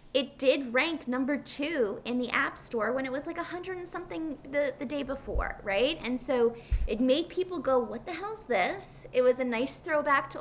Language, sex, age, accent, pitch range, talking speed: English, female, 20-39, American, 215-285 Hz, 215 wpm